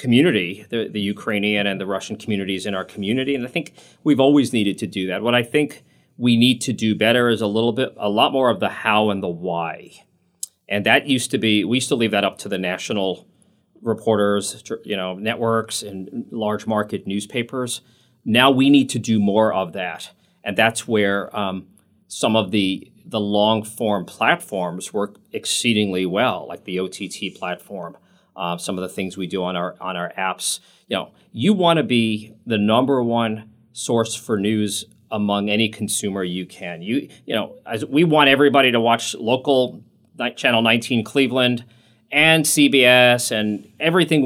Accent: American